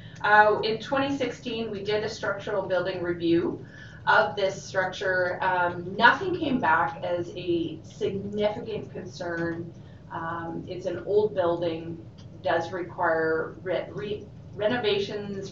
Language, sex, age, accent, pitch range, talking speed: English, female, 30-49, American, 160-195 Hz, 110 wpm